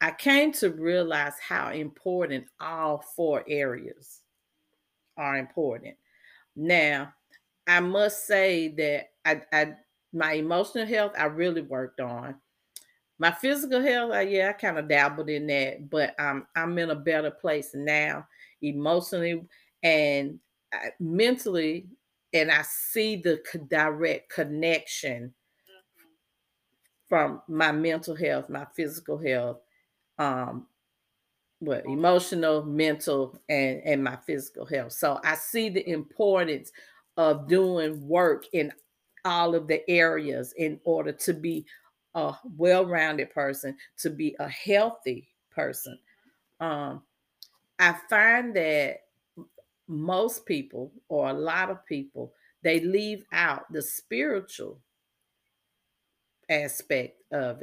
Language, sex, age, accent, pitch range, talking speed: English, female, 40-59, American, 150-185 Hz, 120 wpm